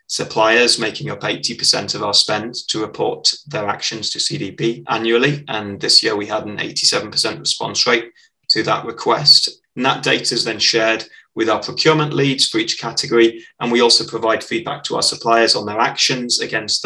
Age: 20-39